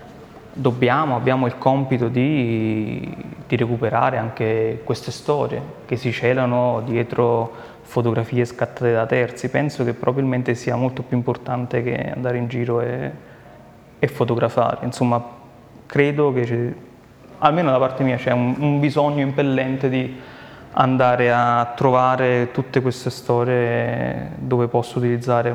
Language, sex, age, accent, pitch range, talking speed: Italian, male, 20-39, native, 120-130 Hz, 125 wpm